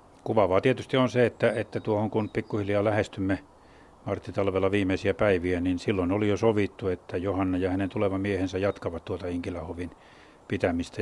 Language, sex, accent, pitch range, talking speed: Finnish, male, native, 95-120 Hz, 150 wpm